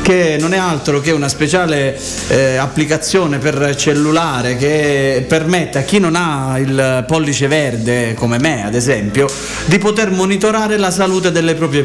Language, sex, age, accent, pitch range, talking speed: Italian, male, 30-49, native, 135-175 Hz, 155 wpm